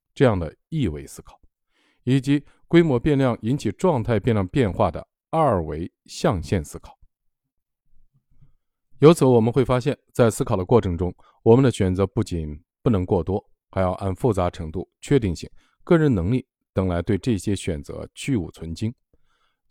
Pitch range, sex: 90-130 Hz, male